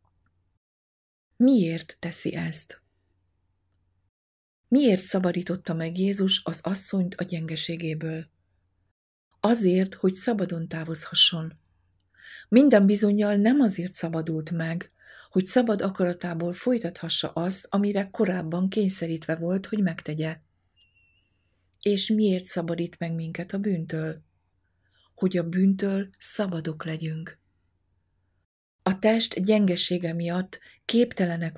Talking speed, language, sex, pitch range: 95 wpm, Hungarian, female, 160-190 Hz